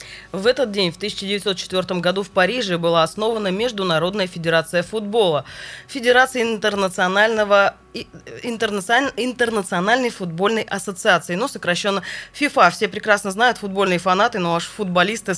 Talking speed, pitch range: 115 wpm, 185-240 Hz